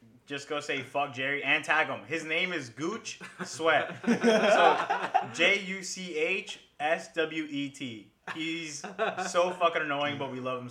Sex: male